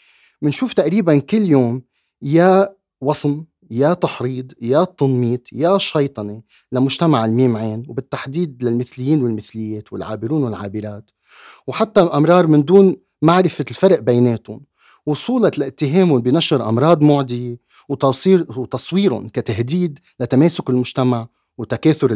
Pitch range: 115-175 Hz